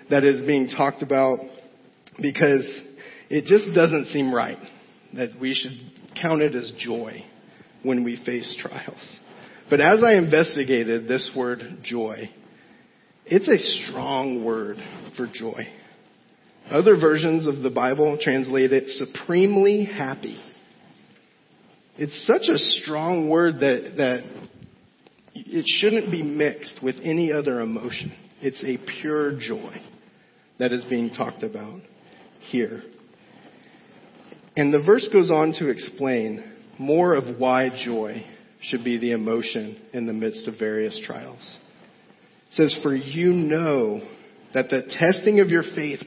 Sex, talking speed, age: male, 130 wpm, 40-59